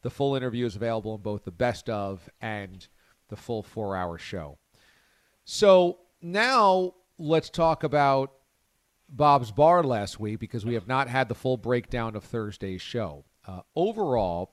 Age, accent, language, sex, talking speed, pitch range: 40-59, American, English, male, 155 wpm, 105-145 Hz